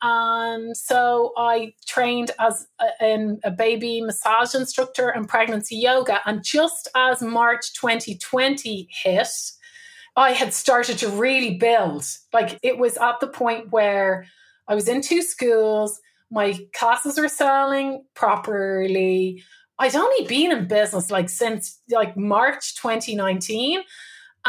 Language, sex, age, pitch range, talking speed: English, female, 30-49, 215-255 Hz, 130 wpm